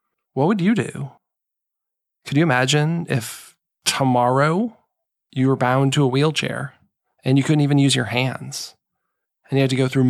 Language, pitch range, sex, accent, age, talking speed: English, 120-135 Hz, male, American, 20-39, 165 wpm